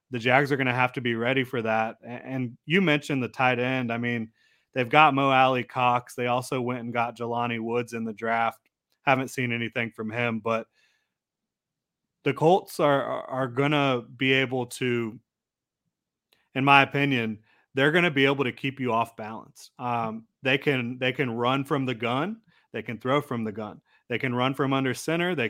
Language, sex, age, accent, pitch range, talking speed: English, male, 30-49, American, 115-135 Hz, 200 wpm